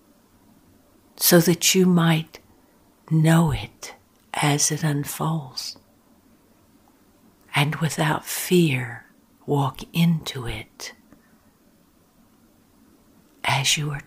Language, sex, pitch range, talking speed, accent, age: English, female, 140-170 Hz, 75 wpm, American, 60-79